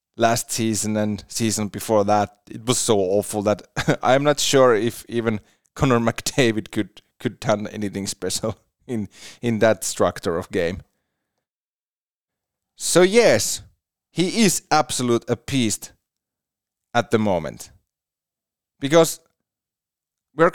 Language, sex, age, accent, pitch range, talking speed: English, male, 30-49, Finnish, 105-130 Hz, 125 wpm